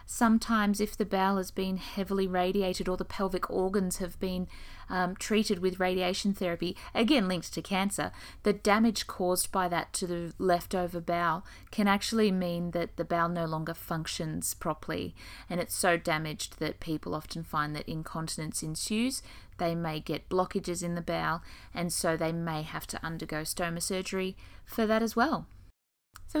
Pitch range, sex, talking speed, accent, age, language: 175-220 Hz, female, 170 wpm, Australian, 20-39, English